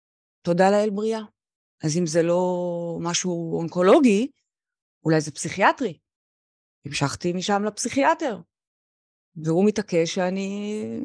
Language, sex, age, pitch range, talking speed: Hebrew, female, 30-49, 180-290 Hz, 100 wpm